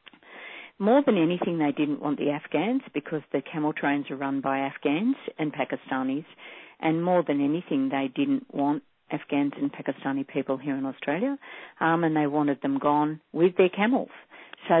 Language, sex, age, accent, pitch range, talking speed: English, female, 50-69, Australian, 145-180 Hz, 170 wpm